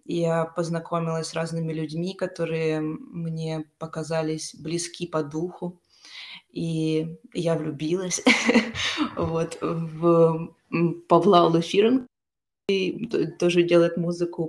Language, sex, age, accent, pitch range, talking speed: Ukrainian, female, 20-39, native, 160-175 Hz, 85 wpm